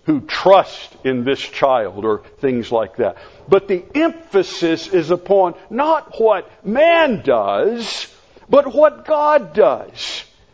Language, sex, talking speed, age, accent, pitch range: English, male, 125 wpm, 50-69, American, 190-295 Hz